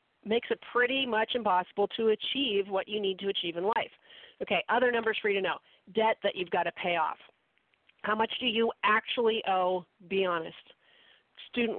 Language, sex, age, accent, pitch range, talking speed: English, female, 40-59, American, 180-230 Hz, 190 wpm